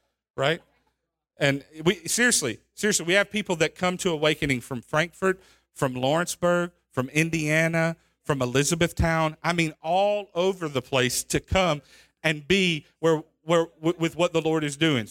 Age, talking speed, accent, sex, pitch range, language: 40-59, 150 wpm, American, male, 140-180 Hz, English